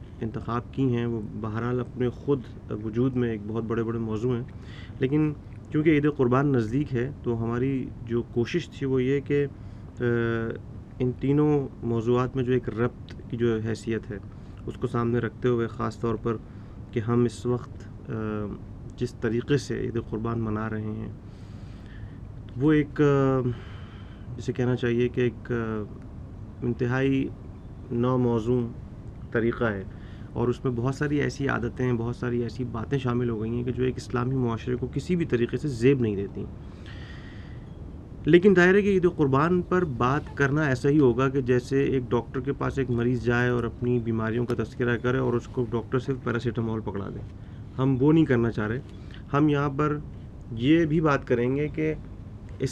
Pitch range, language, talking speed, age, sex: 110-130 Hz, Urdu, 170 wpm, 30-49, male